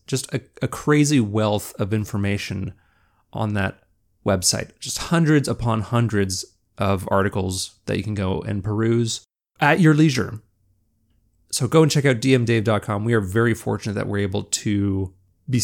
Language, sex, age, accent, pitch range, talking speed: English, male, 30-49, American, 100-130 Hz, 155 wpm